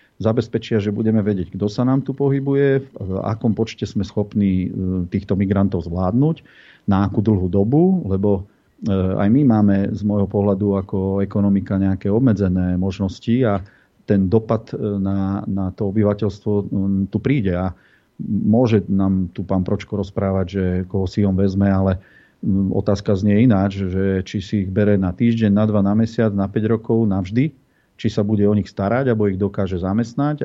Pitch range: 95-115 Hz